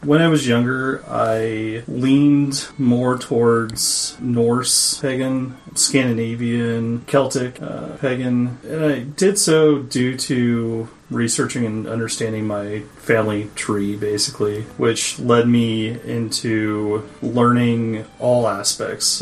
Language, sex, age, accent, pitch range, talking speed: English, male, 30-49, American, 115-135 Hz, 105 wpm